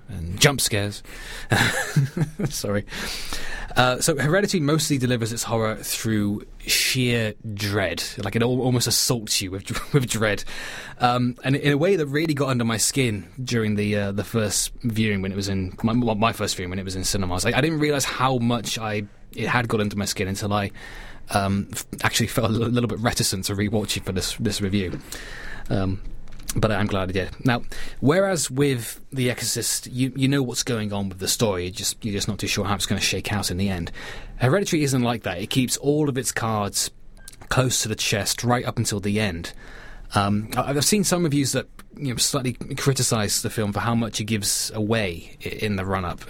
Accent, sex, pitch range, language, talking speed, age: British, male, 100-130 Hz, English, 210 wpm, 20-39